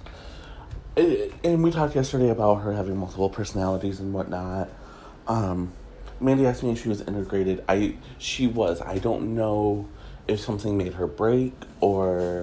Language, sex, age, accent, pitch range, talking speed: English, male, 30-49, American, 90-120 Hz, 150 wpm